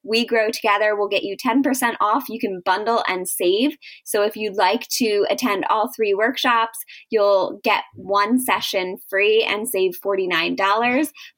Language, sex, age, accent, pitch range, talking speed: English, female, 20-39, American, 195-240 Hz, 160 wpm